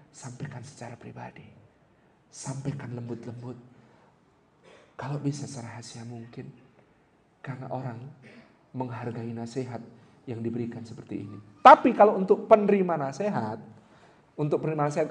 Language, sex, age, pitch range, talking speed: Indonesian, male, 40-59, 125-170 Hz, 105 wpm